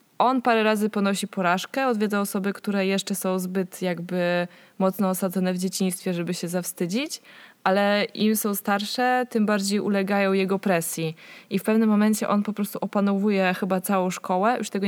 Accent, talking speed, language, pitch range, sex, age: native, 165 wpm, Polish, 185-220 Hz, female, 20-39